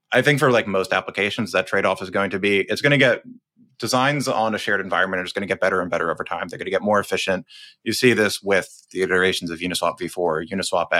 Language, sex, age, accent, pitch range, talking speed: English, male, 20-39, American, 95-115 Hz, 255 wpm